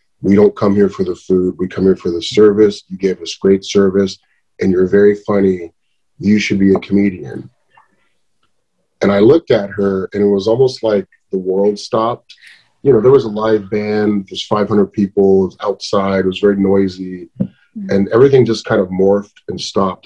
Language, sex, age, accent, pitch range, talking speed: English, male, 30-49, American, 95-115 Hz, 190 wpm